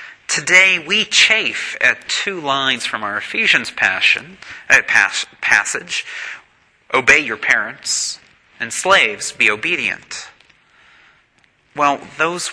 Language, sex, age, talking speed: English, male, 40-59, 90 wpm